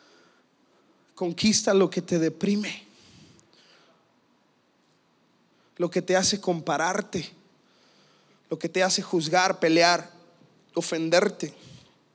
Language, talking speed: English, 85 wpm